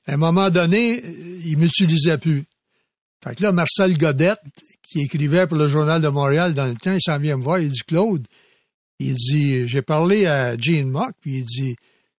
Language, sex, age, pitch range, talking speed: French, male, 60-79, 150-185 Hz, 200 wpm